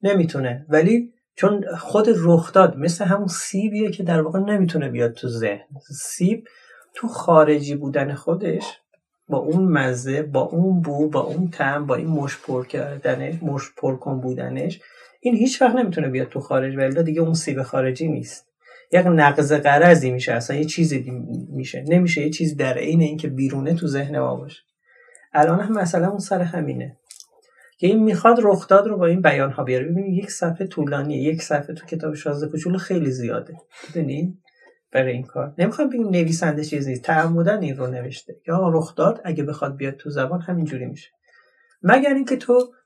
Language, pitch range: Persian, 145-190 Hz